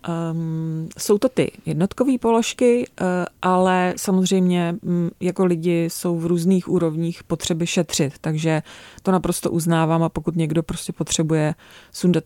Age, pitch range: 30-49, 160-180 Hz